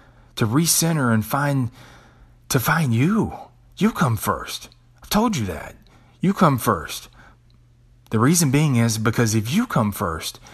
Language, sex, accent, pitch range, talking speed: English, male, American, 100-125 Hz, 150 wpm